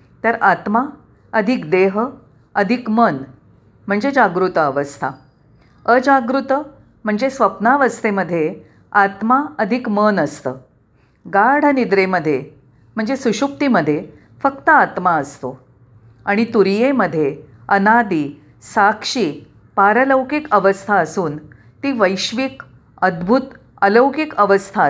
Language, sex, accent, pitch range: Marathi, female, native, 155-255 Hz